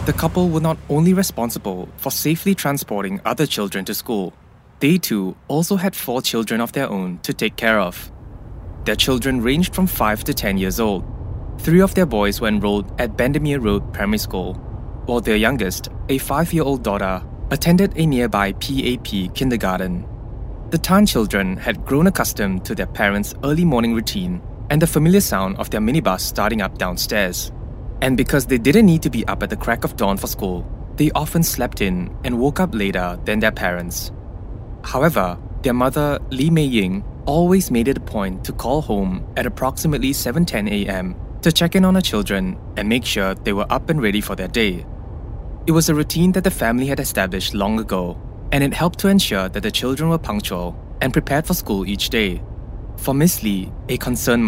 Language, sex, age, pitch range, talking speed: English, male, 20-39, 100-140 Hz, 190 wpm